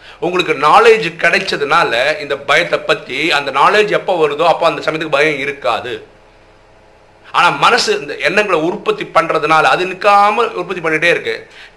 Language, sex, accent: Tamil, male, native